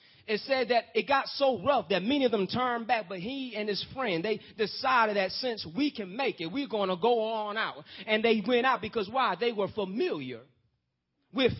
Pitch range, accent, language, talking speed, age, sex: 145-235 Hz, American, English, 215 wpm, 30-49, male